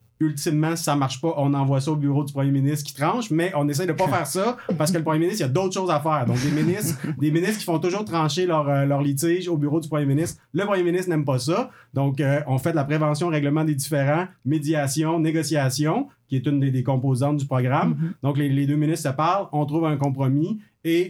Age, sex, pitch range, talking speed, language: 30-49, male, 135-155 Hz, 260 wpm, French